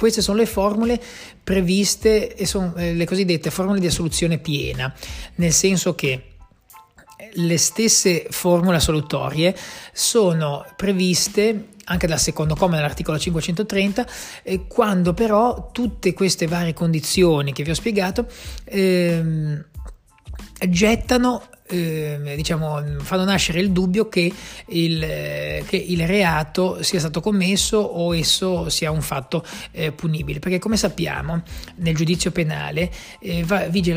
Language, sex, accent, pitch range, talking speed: Italian, male, native, 155-195 Hz, 120 wpm